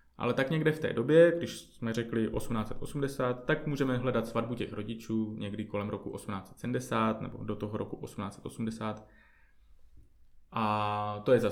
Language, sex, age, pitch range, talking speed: Czech, male, 20-39, 105-125 Hz, 130 wpm